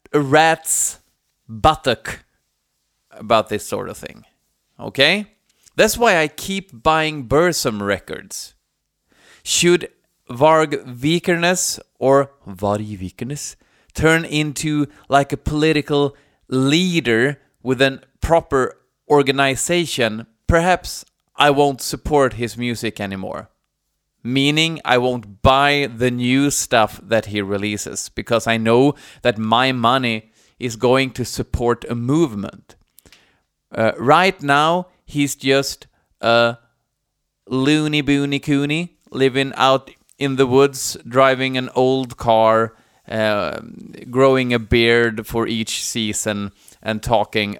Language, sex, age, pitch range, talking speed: Swedish, male, 30-49, 115-145 Hz, 110 wpm